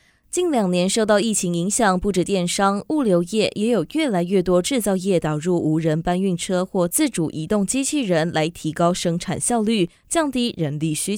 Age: 20-39